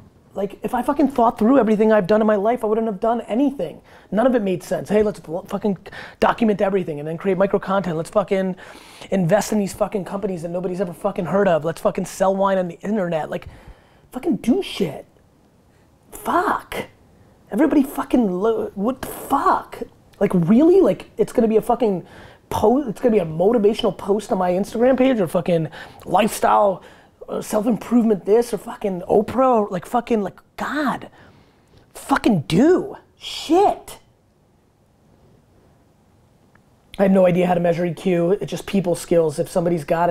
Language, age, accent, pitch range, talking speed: English, 20-39, American, 180-230 Hz, 175 wpm